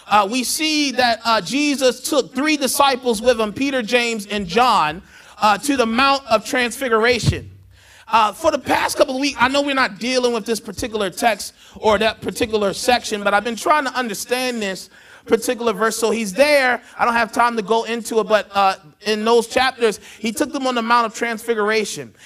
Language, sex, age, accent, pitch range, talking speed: English, male, 30-49, American, 220-270 Hz, 200 wpm